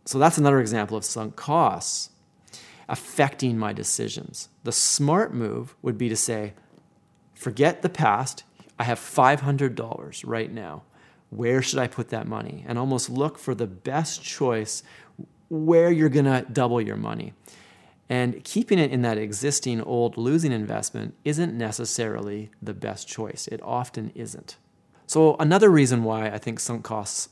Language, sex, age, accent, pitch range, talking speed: English, male, 30-49, American, 115-150 Hz, 150 wpm